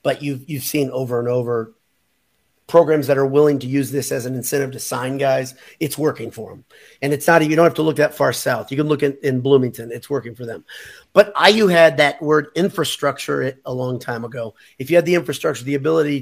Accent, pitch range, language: American, 130-150 Hz, English